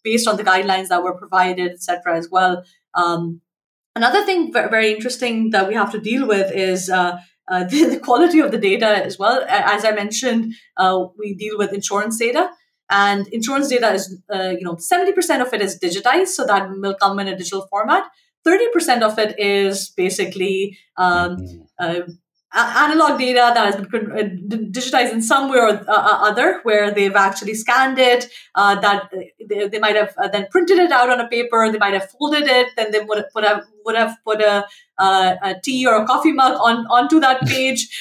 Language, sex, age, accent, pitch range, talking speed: English, female, 30-49, Indian, 195-260 Hz, 195 wpm